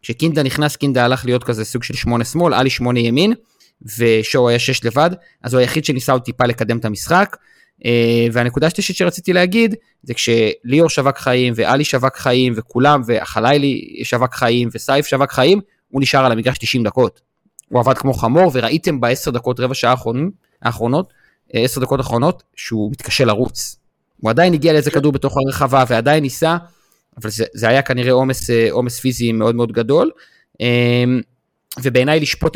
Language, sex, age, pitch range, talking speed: Hebrew, male, 30-49, 120-150 Hz, 145 wpm